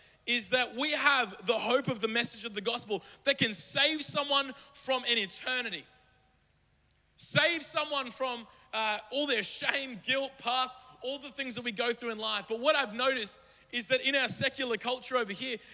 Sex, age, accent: male, 20-39, Australian